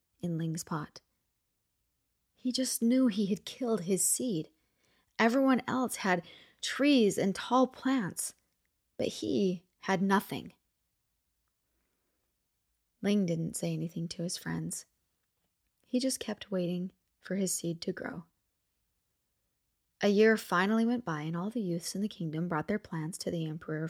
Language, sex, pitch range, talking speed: English, female, 155-200 Hz, 140 wpm